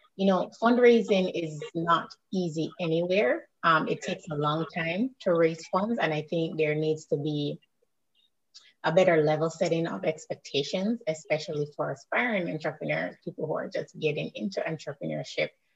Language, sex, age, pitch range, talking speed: English, female, 30-49, 160-200 Hz, 150 wpm